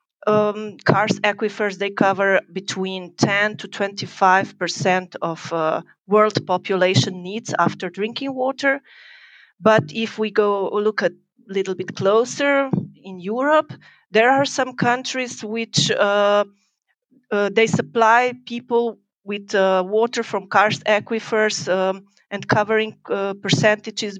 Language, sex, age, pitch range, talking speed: English, female, 40-59, 190-225 Hz, 125 wpm